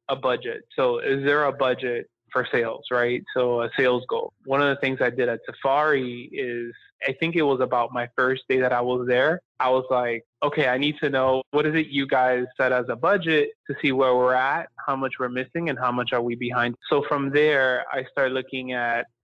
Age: 20-39